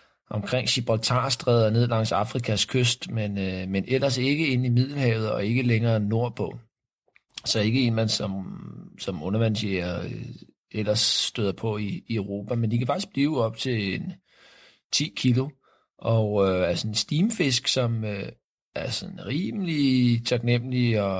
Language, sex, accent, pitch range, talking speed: Danish, male, native, 105-125 Hz, 145 wpm